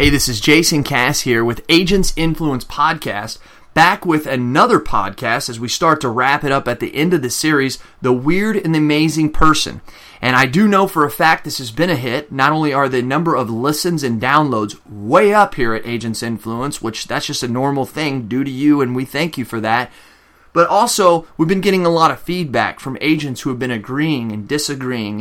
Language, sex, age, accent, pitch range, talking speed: English, male, 30-49, American, 120-155 Hz, 220 wpm